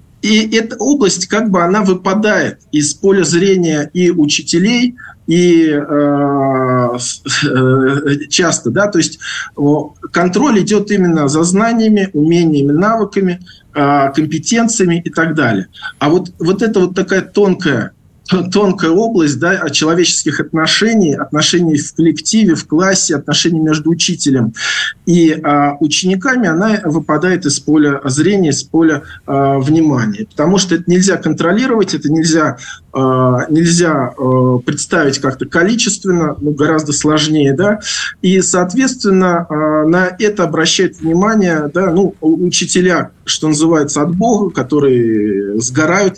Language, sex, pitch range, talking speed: Russian, male, 145-185 Hz, 120 wpm